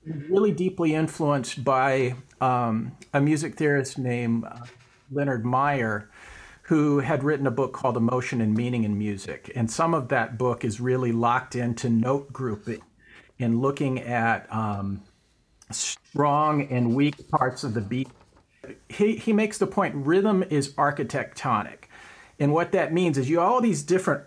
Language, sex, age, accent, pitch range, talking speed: English, male, 50-69, American, 120-155 Hz, 155 wpm